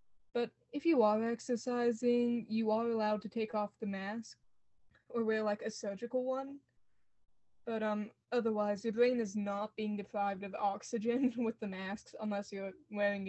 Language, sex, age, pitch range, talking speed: English, female, 20-39, 205-235 Hz, 160 wpm